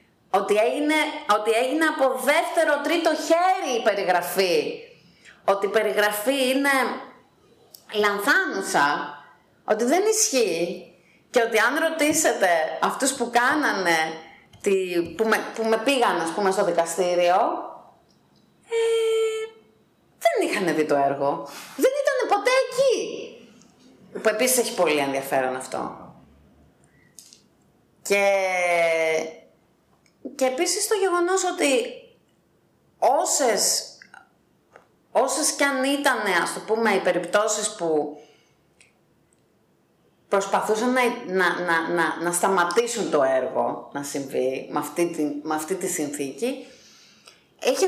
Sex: female